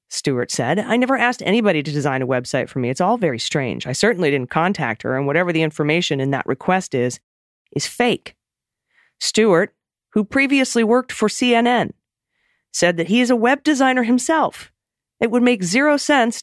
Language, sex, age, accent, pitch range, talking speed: English, female, 40-59, American, 150-215 Hz, 185 wpm